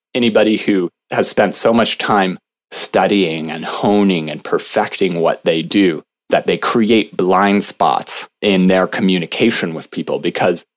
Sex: male